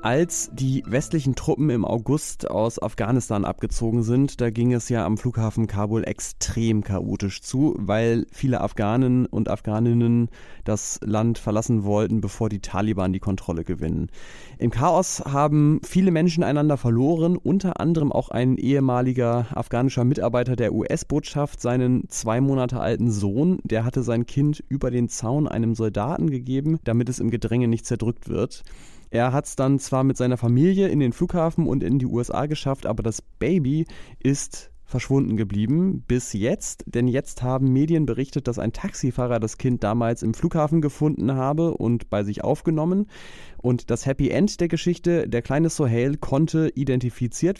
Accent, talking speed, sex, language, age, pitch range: German, 160 wpm, male, German, 30-49, 110-145 Hz